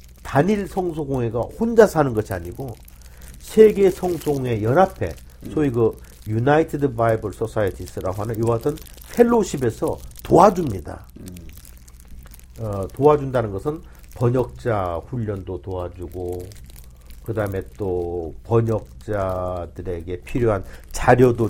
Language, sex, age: Korean, male, 50-69